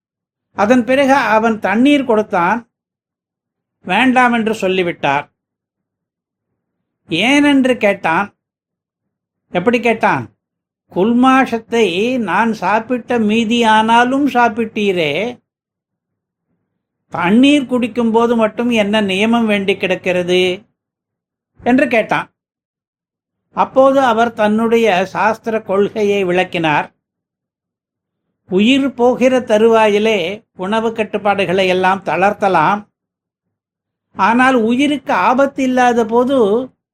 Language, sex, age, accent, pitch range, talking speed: Tamil, male, 60-79, native, 200-245 Hz, 75 wpm